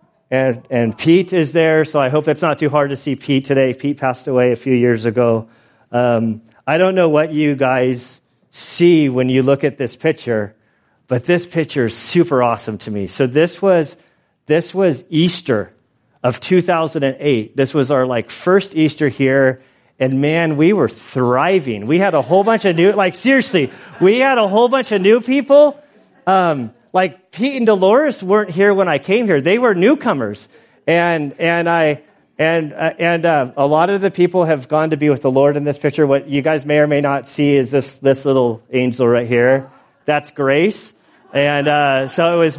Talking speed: 195 wpm